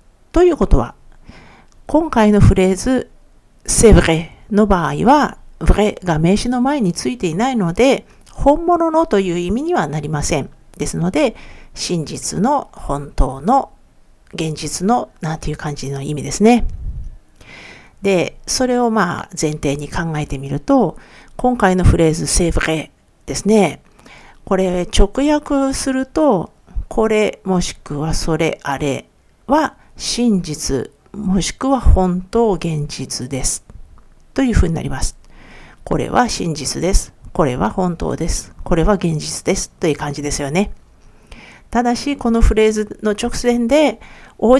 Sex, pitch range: female, 155-250 Hz